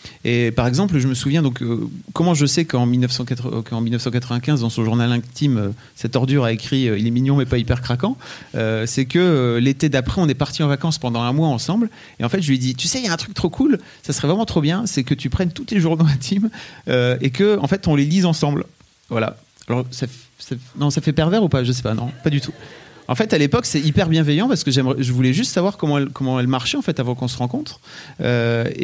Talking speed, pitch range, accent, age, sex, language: 270 wpm, 120-150 Hz, French, 30-49, male, French